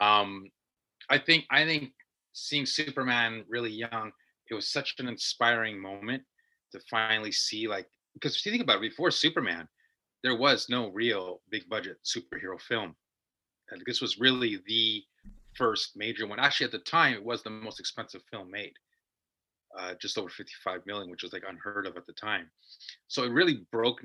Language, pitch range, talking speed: English, 105-135 Hz, 175 wpm